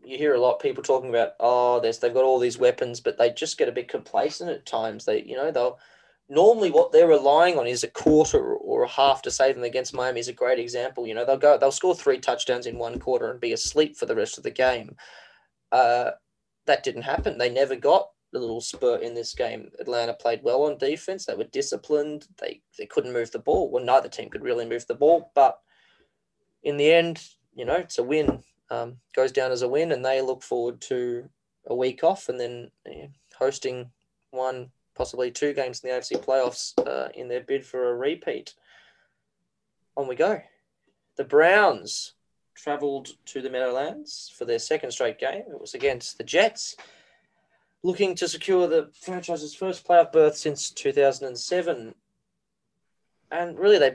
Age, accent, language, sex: 20-39, Australian, English, male